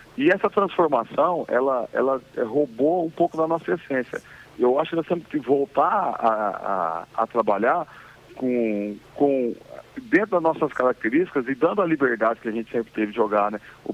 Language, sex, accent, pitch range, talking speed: Portuguese, male, Brazilian, 125-170 Hz, 165 wpm